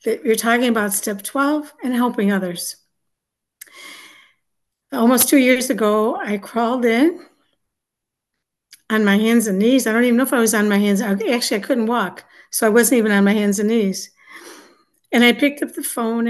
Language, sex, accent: English, female, American